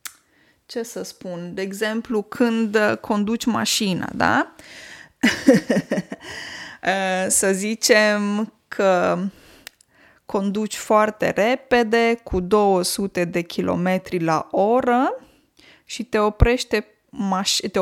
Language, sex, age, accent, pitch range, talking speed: Romanian, female, 20-39, native, 180-230 Hz, 75 wpm